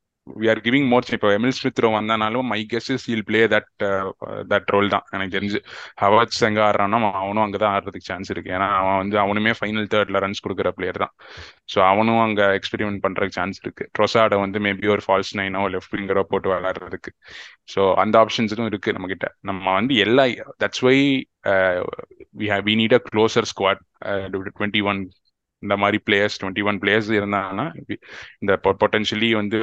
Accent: native